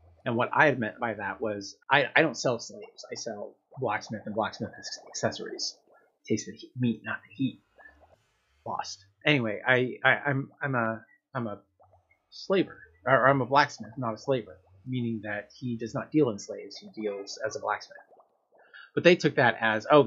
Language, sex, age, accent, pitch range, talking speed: English, male, 30-49, American, 110-135 Hz, 185 wpm